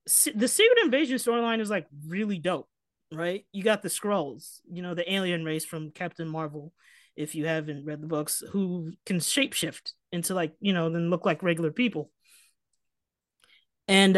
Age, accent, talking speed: 20-39, American, 170 wpm